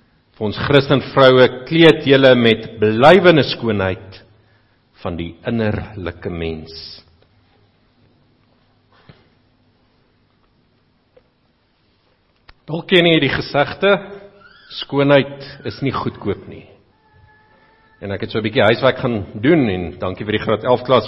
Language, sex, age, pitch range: English, male, 50-69, 105-145 Hz